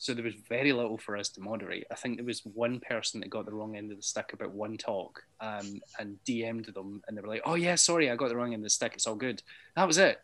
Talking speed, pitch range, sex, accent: 305 wpm, 105-120 Hz, male, British